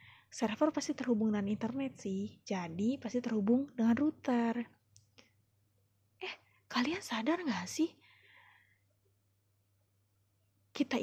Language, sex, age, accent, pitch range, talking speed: Indonesian, female, 20-39, native, 200-260 Hz, 95 wpm